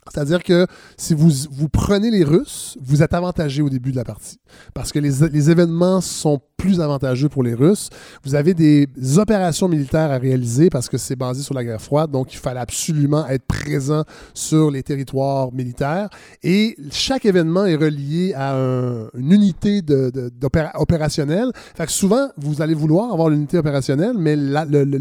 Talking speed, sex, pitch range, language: 185 wpm, male, 140-180 Hz, French